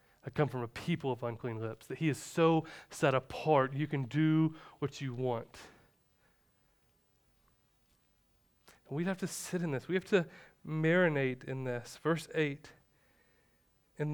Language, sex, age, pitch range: English, male, 30-49, 135-175 Hz